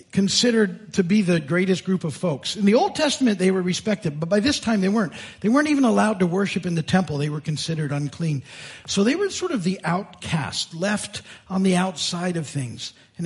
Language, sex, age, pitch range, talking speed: English, male, 50-69, 145-200 Hz, 215 wpm